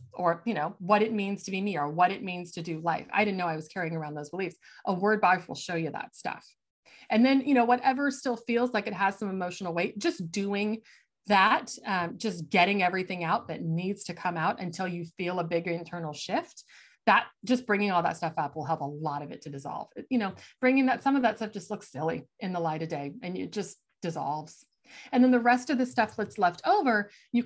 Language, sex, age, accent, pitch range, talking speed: English, female, 30-49, American, 175-240 Hz, 245 wpm